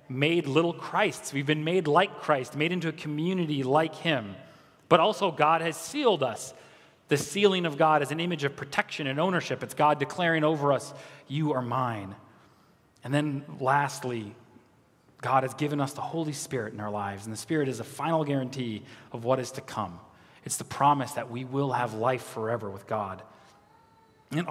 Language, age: English, 30-49